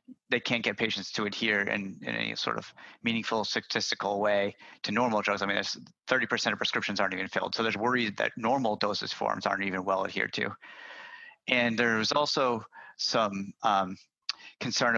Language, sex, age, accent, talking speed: English, male, 30-49, American, 175 wpm